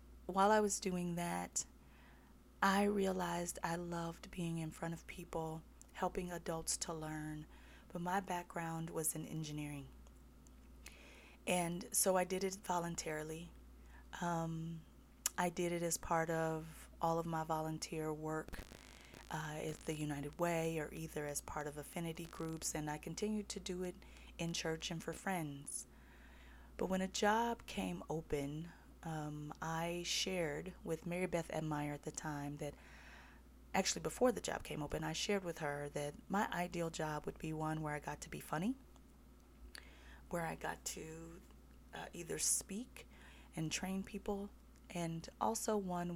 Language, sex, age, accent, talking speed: English, female, 30-49, American, 155 wpm